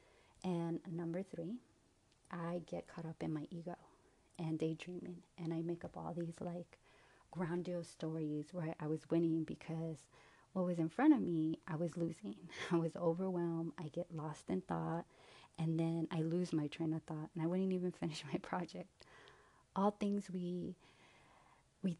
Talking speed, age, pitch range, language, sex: 170 wpm, 30-49, 160-185 Hz, English, female